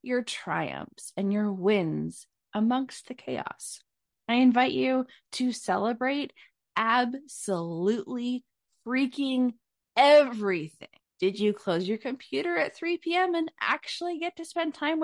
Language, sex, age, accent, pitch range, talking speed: English, female, 20-39, American, 200-275 Hz, 120 wpm